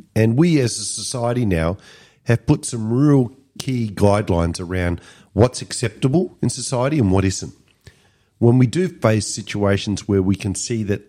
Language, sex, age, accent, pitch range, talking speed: English, male, 50-69, Australian, 100-125 Hz, 160 wpm